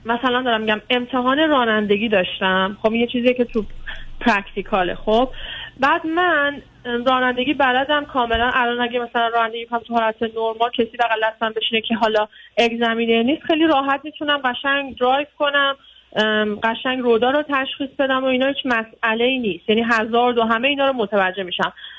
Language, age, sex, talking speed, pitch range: Persian, 30-49, female, 155 wpm, 220-265 Hz